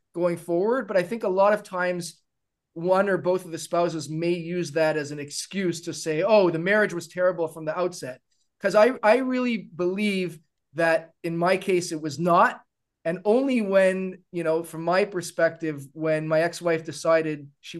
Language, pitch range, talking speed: English, 160-185 Hz, 190 wpm